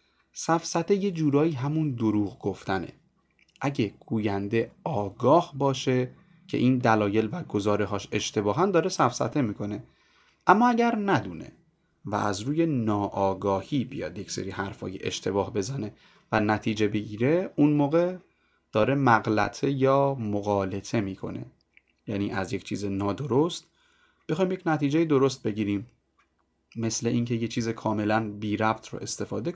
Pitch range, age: 105-145 Hz, 30-49